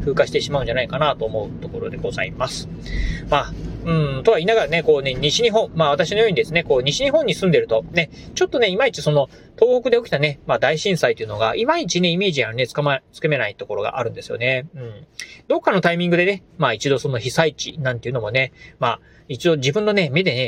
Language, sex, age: Japanese, male, 30-49